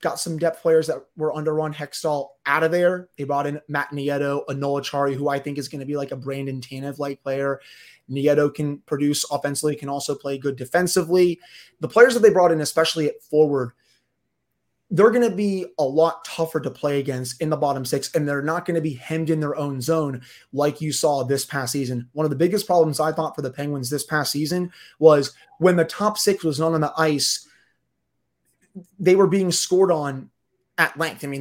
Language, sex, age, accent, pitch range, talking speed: English, male, 20-39, American, 140-170 Hz, 210 wpm